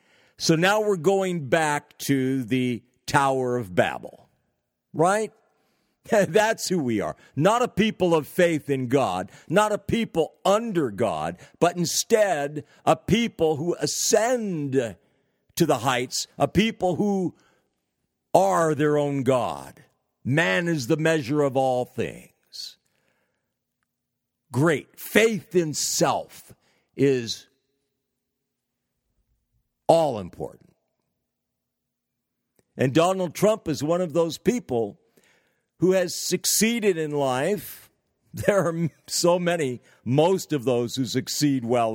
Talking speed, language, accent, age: 115 wpm, English, American, 50-69